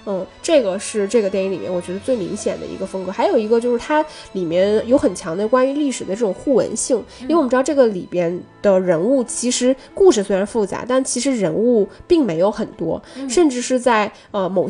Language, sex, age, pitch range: Chinese, female, 10-29, 190-250 Hz